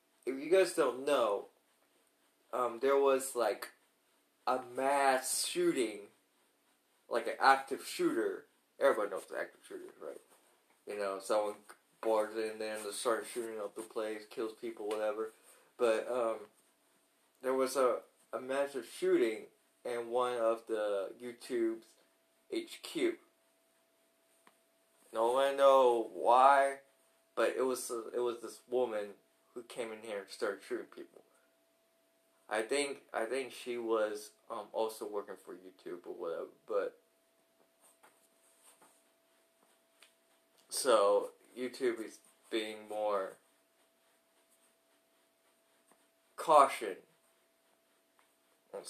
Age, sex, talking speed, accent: 20-39, male, 110 wpm, American